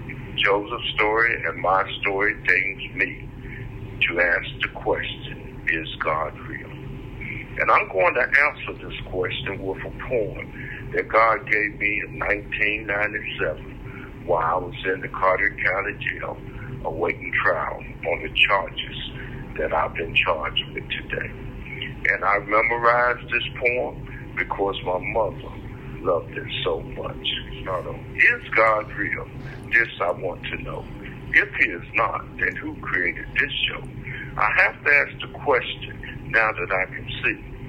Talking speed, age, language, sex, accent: 140 wpm, 60-79, English, male, American